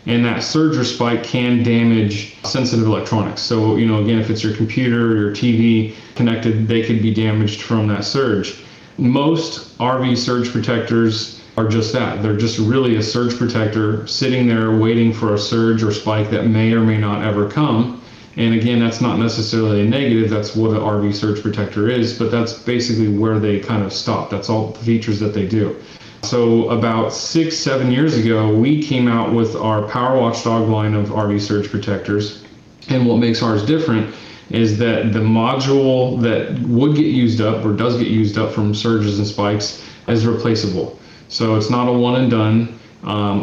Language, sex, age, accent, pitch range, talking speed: English, male, 30-49, American, 105-120 Hz, 185 wpm